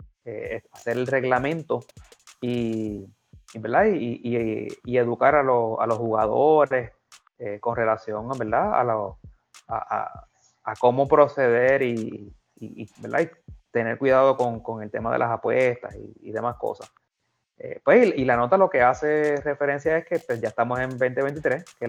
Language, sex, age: Spanish, male, 30-49